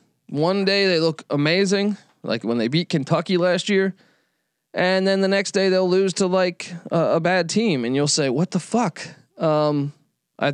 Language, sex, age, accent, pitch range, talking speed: English, male, 20-39, American, 140-175 Hz, 190 wpm